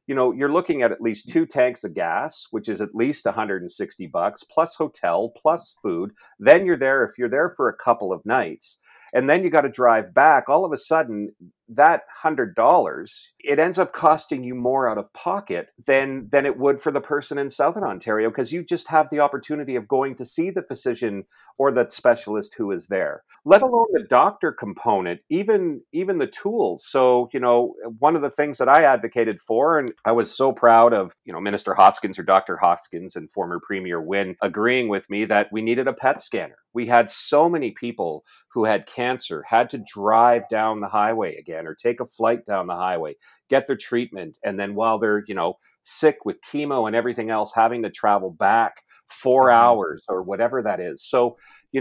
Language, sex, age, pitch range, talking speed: English, male, 40-59, 105-140 Hz, 205 wpm